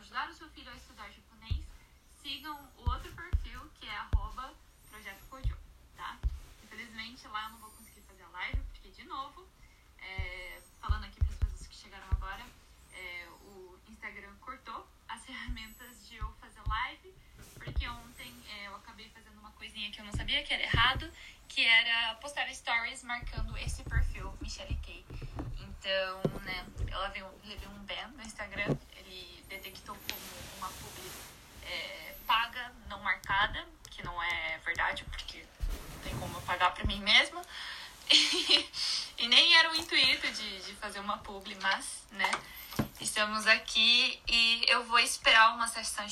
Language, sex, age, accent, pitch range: Japanese, female, 10-29, Brazilian, 190-240 Hz